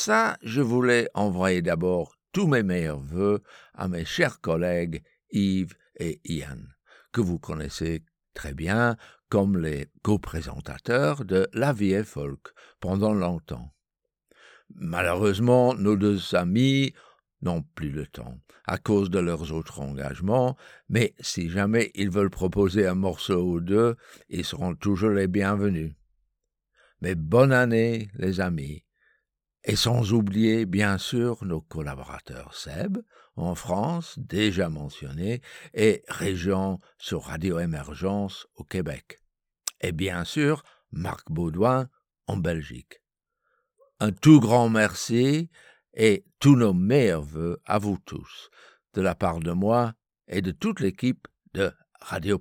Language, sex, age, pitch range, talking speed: French, male, 60-79, 80-115 Hz, 130 wpm